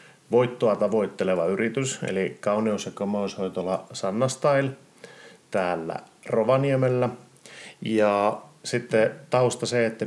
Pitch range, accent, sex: 100-120 Hz, native, male